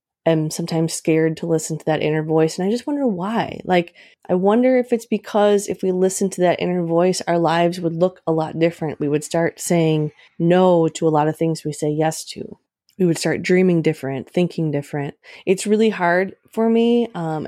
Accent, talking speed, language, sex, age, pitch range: American, 210 wpm, English, female, 20-39, 160-185 Hz